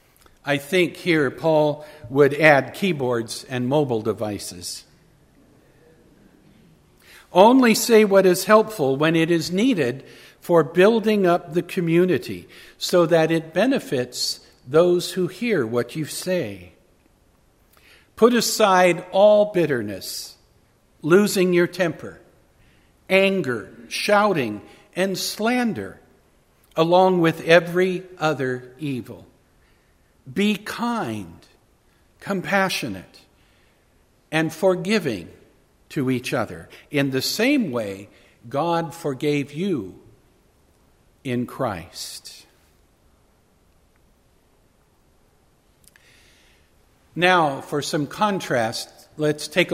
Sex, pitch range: male, 125-185 Hz